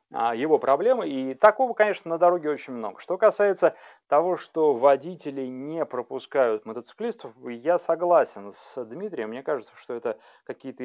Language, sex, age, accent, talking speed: Russian, male, 30-49, native, 145 wpm